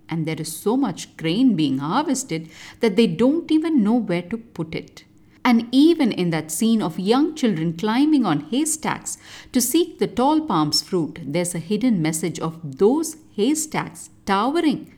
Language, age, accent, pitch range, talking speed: English, 50-69, Indian, 160-255 Hz, 170 wpm